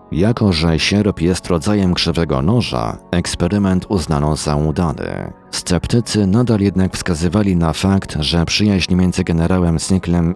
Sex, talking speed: male, 125 wpm